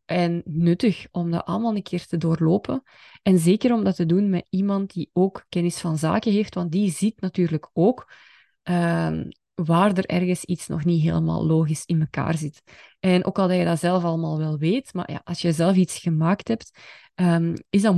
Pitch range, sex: 165-200 Hz, female